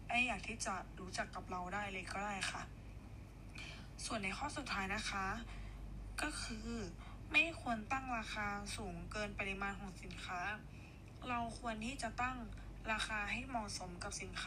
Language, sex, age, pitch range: Thai, female, 20-39, 150-240 Hz